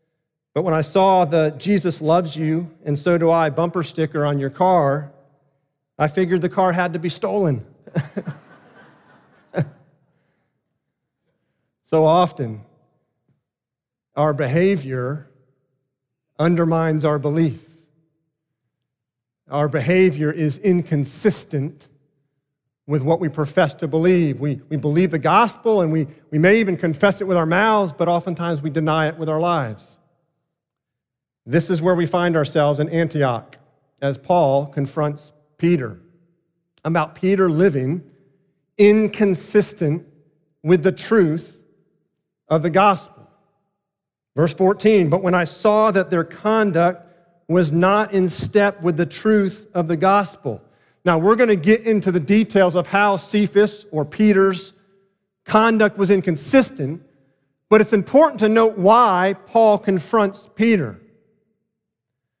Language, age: English, 40-59